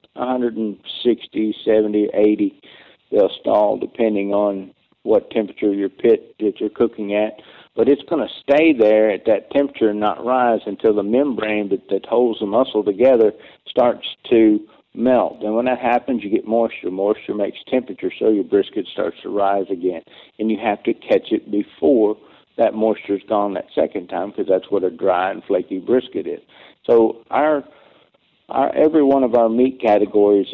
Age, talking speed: 60-79, 175 wpm